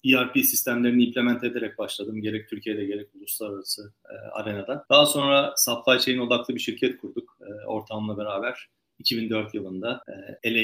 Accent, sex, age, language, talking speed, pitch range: native, male, 40-59, Turkish, 135 wpm, 110-135 Hz